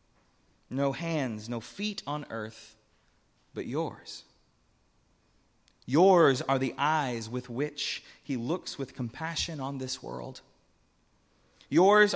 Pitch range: 120-160 Hz